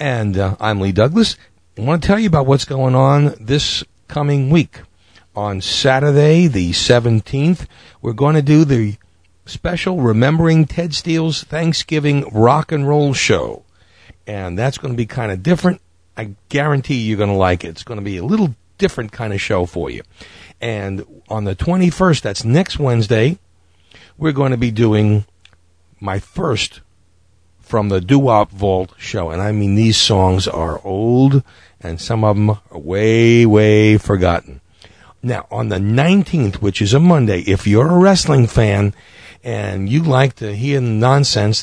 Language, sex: English, male